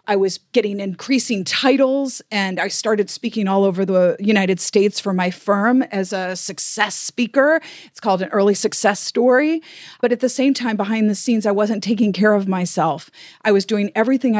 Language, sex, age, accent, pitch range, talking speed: English, female, 40-59, American, 185-230 Hz, 190 wpm